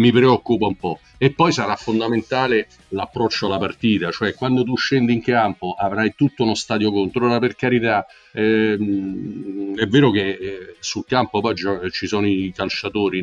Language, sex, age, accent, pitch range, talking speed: Italian, male, 50-69, native, 105-130 Hz, 170 wpm